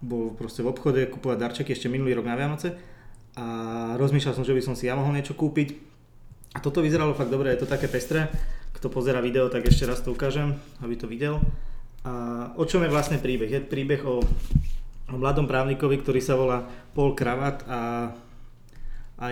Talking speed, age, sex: 185 wpm, 20-39, male